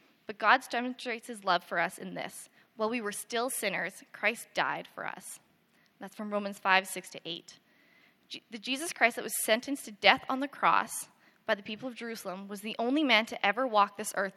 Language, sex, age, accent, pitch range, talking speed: English, female, 10-29, American, 200-240 Hz, 210 wpm